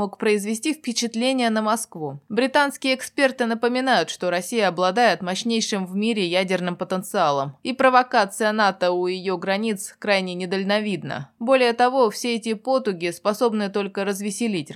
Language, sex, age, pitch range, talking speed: Russian, female, 20-39, 175-225 Hz, 130 wpm